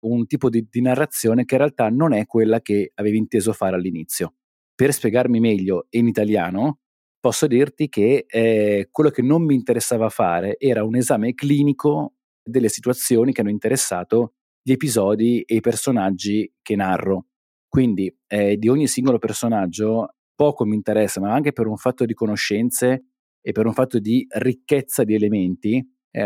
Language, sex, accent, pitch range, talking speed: Italian, male, native, 105-130 Hz, 165 wpm